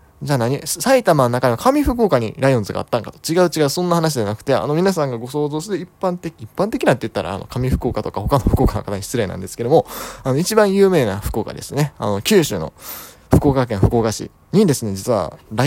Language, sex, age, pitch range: Japanese, male, 20-39, 110-155 Hz